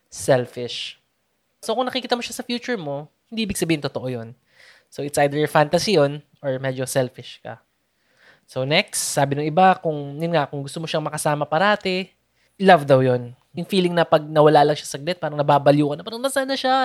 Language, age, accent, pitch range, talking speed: Filipino, 20-39, native, 140-175 Hz, 195 wpm